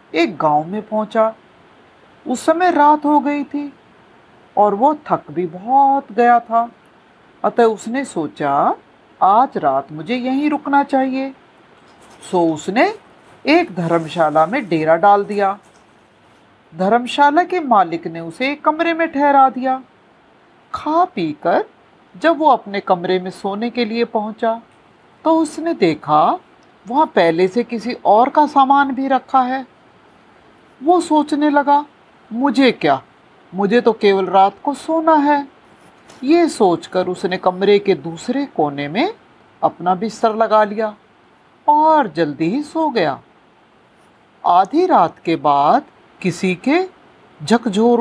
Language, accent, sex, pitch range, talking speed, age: Hindi, native, female, 200-295 Hz, 130 wpm, 50-69